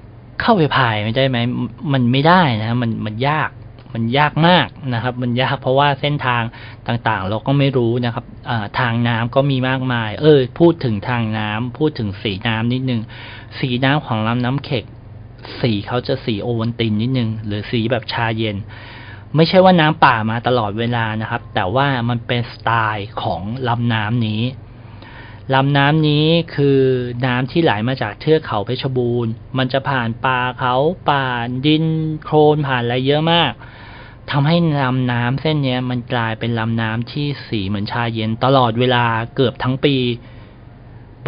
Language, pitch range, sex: Thai, 115-140 Hz, male